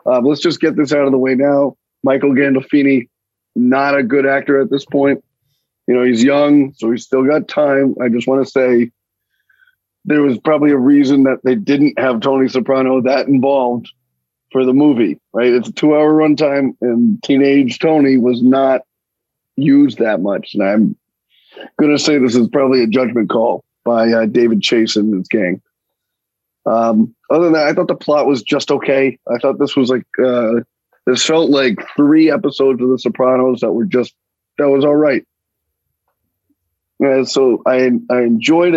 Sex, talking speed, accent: male, 185 wpm, American